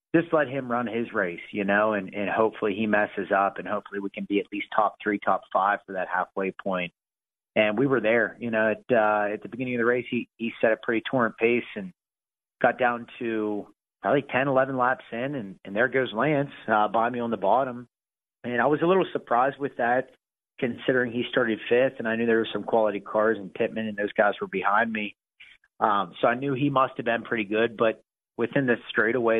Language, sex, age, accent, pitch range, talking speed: English, male, 30-49, American, 105-135 Hz, 225 wpm